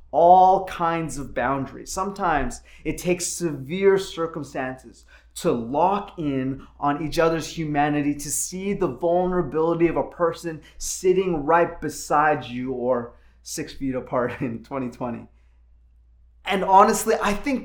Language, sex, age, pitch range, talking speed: English, male, 20-39, 135-185 Hz, 125 wpm